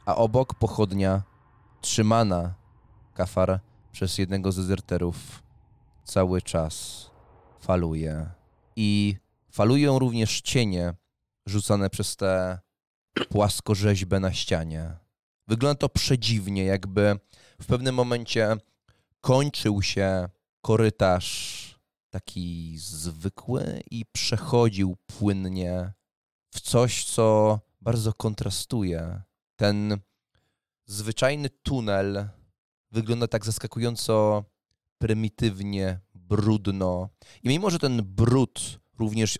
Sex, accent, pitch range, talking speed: male, Polish, 95-115 Hz, 85 wpm